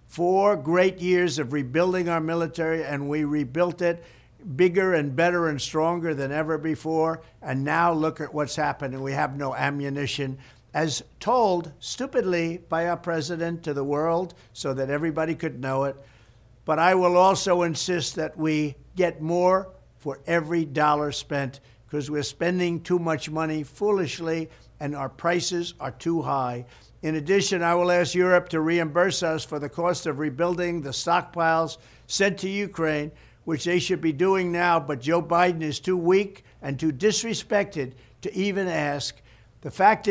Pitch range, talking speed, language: 145-175 Hz, 165 wpm, English